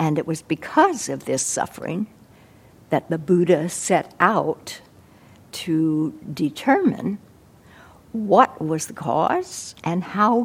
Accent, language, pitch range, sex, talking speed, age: American, English, 155-190 Hz, female, 115 wpm, 60-79